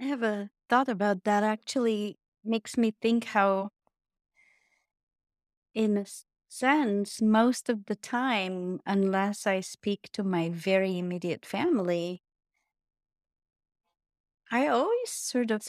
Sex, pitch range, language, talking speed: female, 185-220 Hz, English, 110 wpm